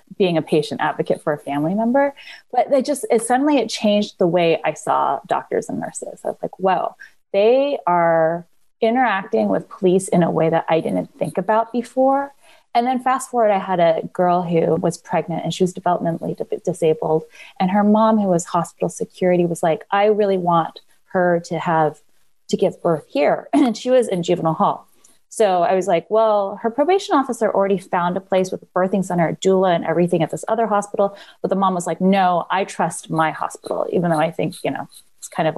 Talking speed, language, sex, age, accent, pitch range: 205 wpm, English, female, 20-39, American, 175-230 Hz